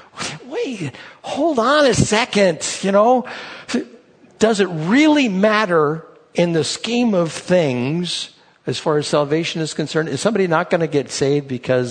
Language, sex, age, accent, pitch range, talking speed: English, male, 60-79, American, 140-195 Hz, 150 wpm